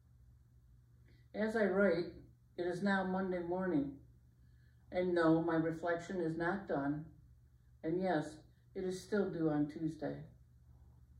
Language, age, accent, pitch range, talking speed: English, 50-69, American, 125-185 Hz, 125 wpm